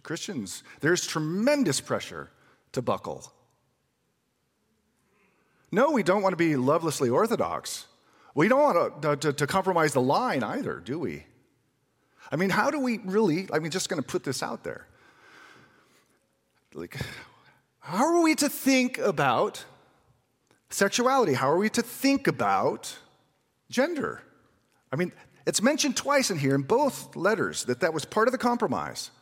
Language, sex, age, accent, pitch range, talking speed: English, male, 40-59, American, 135-225 Hz, 150 wpm